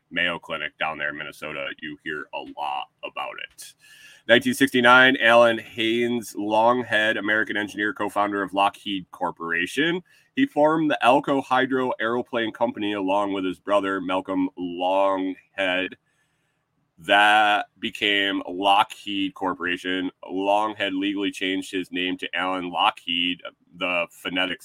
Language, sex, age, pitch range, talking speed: English, male, 30-49, 95-120 Hz, 120 wpm